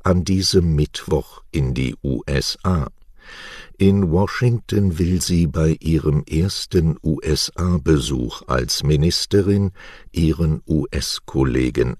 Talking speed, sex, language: 90 wpm, male, English